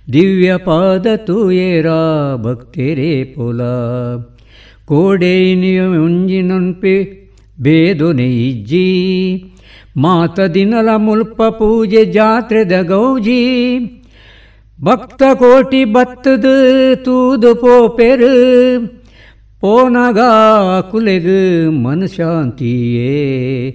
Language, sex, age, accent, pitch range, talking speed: Kannada, female, 60-79, native, 120-195 Hz, 60 wpm